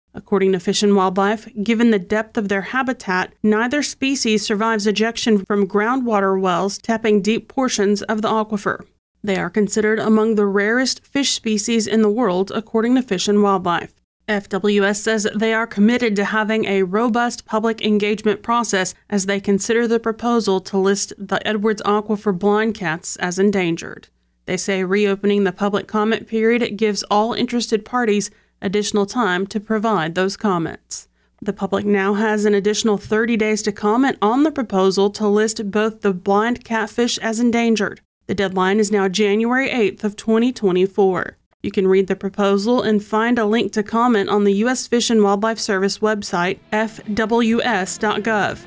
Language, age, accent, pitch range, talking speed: English, 30-49, American, 200-225 Hz, 165 wpm